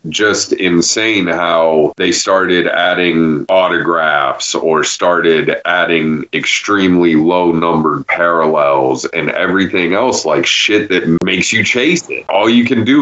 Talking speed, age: 130 wpm, 30-49